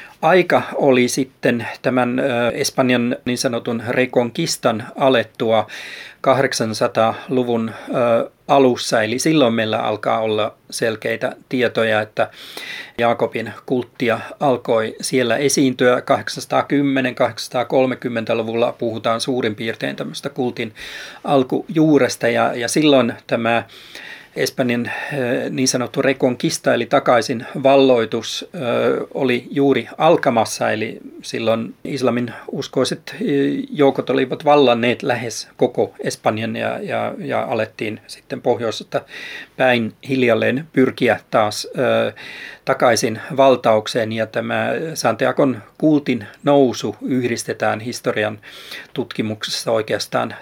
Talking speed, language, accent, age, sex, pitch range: 90 wpm, Finnish, native, 40-59, male, 115-135 Hz